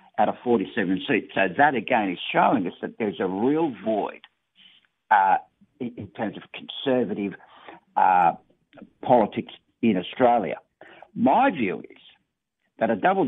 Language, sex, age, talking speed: English, male, 60-79, 140 wpm